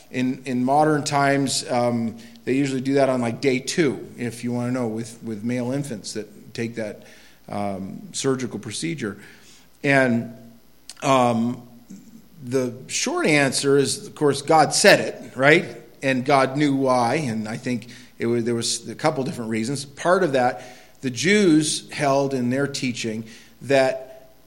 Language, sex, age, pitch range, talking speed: English, male, 40-59, 120-145 Hz, 160 wpm